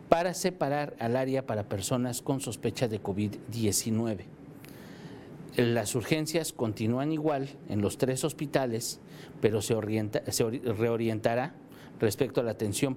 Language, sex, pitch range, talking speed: Spanish, male, 115-145 Hz, 120 wpm